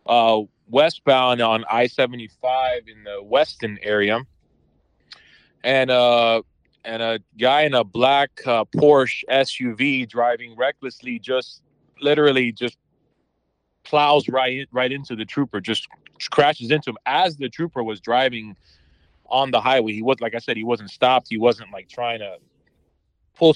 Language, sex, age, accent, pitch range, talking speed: English, male, 30-49, American, 110-130 Hz, 145 wpm